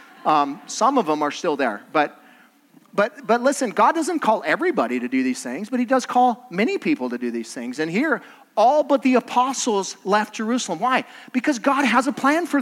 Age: 40-59